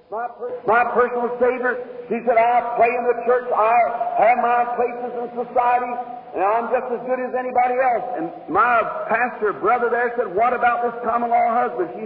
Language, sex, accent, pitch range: English, male, American, 230-255 Hz